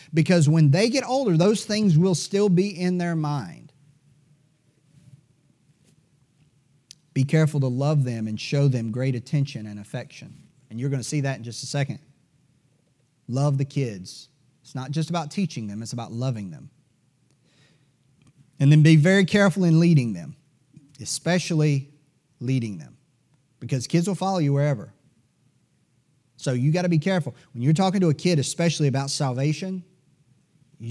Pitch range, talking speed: 135-160 Hz, 155 wpm